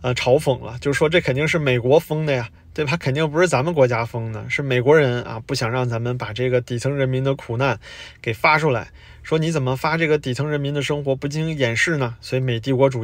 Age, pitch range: 20-39, 120-160 Hz